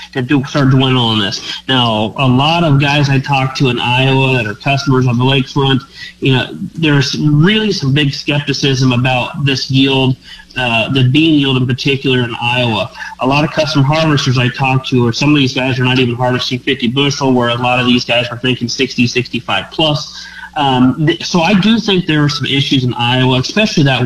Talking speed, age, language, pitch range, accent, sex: 210 wpm, 30-49, English, 125-145 Hz, American, male